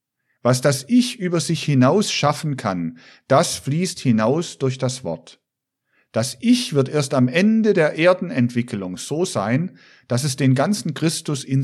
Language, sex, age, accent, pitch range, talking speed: German, male, 50-69, German, 125-160 Hz, 155 wpm